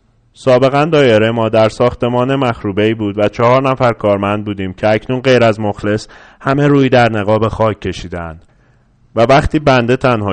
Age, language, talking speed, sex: 30-49, Persian, 155 wpm, male